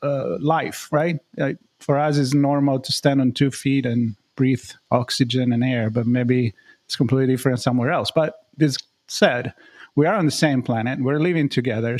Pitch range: 125-150 Hz